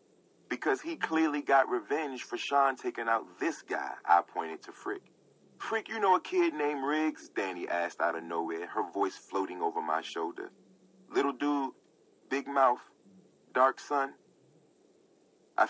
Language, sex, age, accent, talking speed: English, male, 40-59, American, 155 wpm